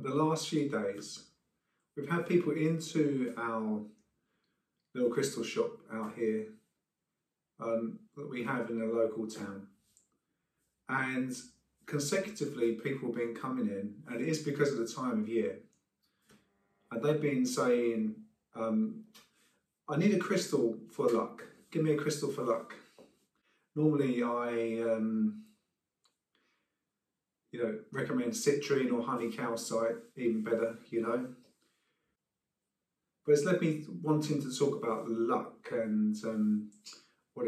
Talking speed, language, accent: 130 wpm, English, British